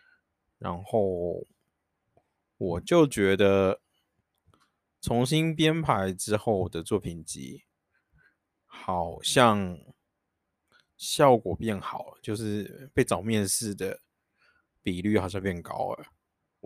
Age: 20-39